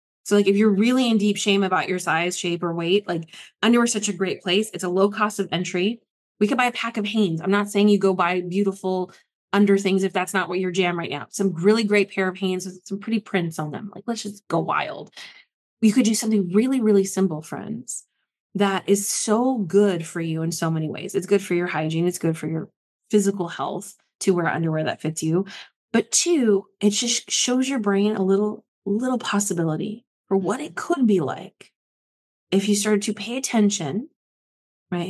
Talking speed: 215 wpm